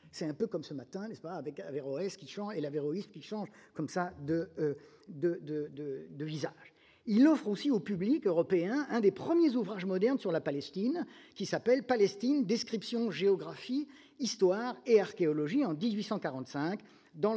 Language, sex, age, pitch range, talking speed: French, male, 50-69, 165-245 Hz, 175 wpm